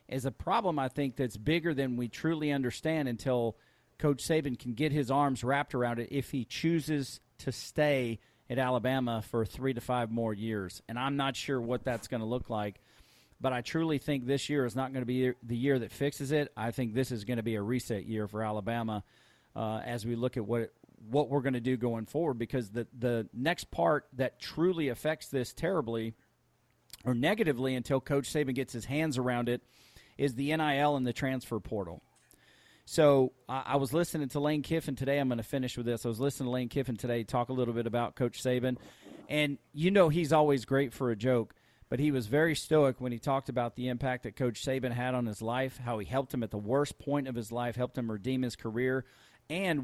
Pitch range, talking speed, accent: 120-140 Hz, 220 wpm, American